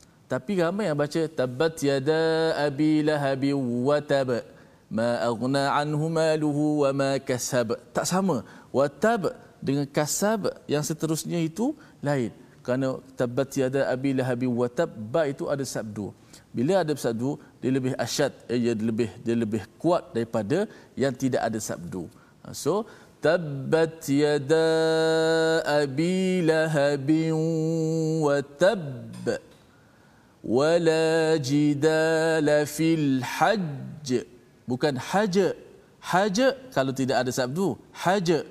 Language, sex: Malayalam, male